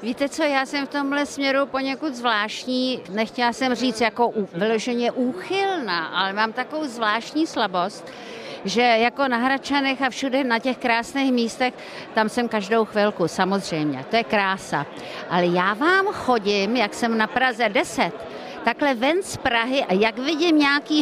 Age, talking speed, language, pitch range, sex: 50-69, 155 wpm, Czech, 215-265 Hz, female